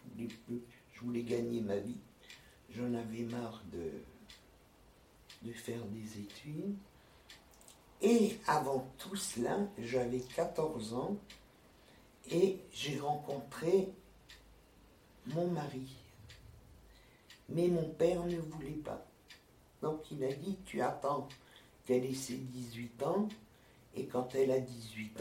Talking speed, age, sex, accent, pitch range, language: 110 wpm, 60-79, male, French, 120-160 Hz, French